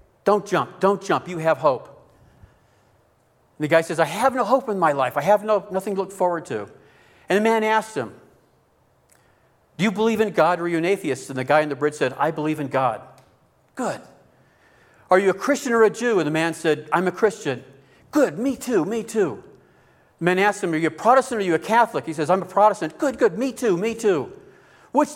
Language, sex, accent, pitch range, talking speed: English, male, American, 175-230 Hz, 225 wpm